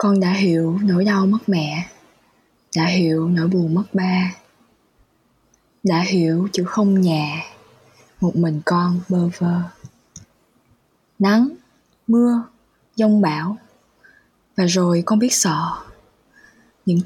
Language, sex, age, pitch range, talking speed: Vietnamese, female, 20-39, 170-200 Hz, 115 wpm